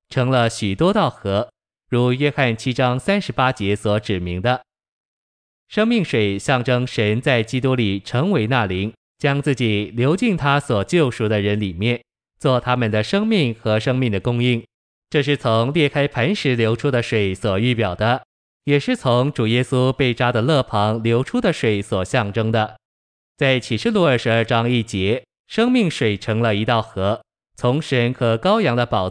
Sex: male